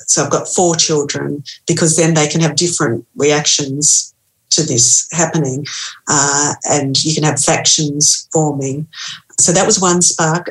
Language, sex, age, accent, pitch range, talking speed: English, female, 40-59, Australian, 150-170 Hz, 155 wpm